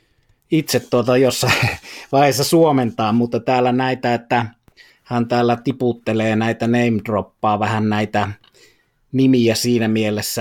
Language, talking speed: Finnish, 120 wpm